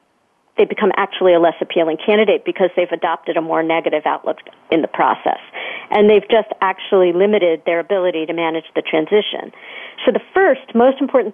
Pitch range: 180-255 Hz